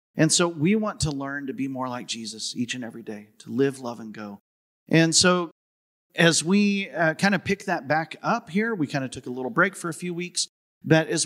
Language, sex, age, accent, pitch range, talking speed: English, male, 40-59, American, 125-170 Hz, 240 wpm